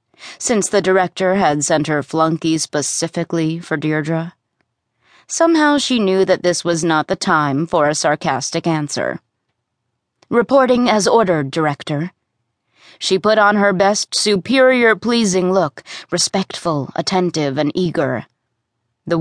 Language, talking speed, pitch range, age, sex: English, 125 wpm, 155-210 Hz, 30-49, female